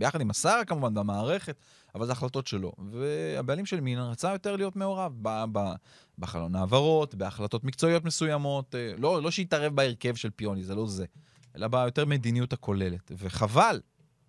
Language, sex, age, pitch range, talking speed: Hebrew, male, 30-49, 110-145 Hz, 155 wpm